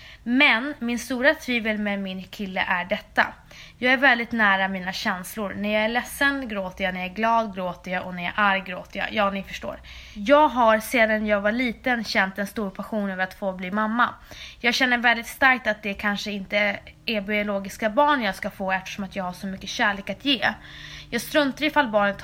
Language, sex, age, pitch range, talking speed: Swedish, female, 20-39, 190-240 Hz, 215 wpm